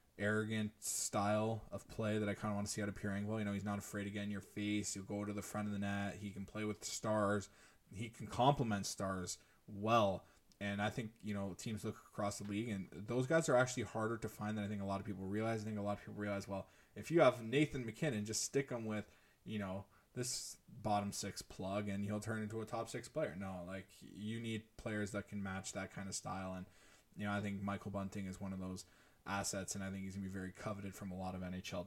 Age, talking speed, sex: 20-39, 260 wpm, male